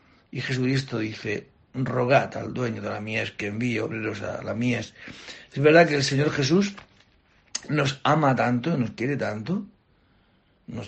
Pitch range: 105-140 Hz